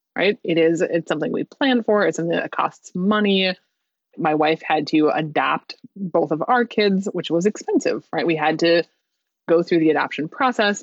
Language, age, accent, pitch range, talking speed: English, 20-39, American, 160-190 Hz, 190 wpm